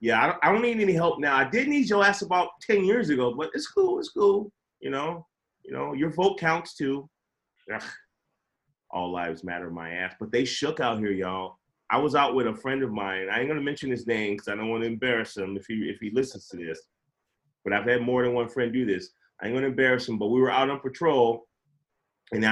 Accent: American